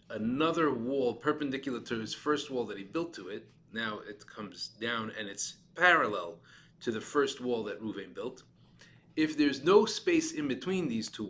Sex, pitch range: male, 110-160 Hz